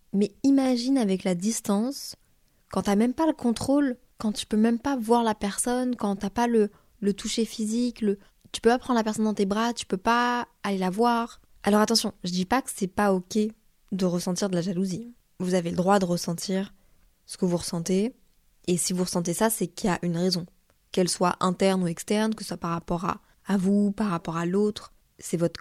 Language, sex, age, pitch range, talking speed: French, female, 20-39, 175-215 Hz, 225 wpm